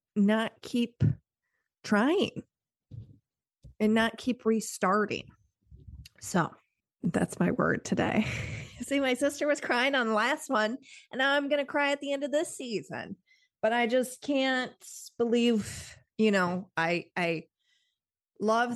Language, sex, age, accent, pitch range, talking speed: English, female, 30-49, American, 170-225 Hz, 135 wpm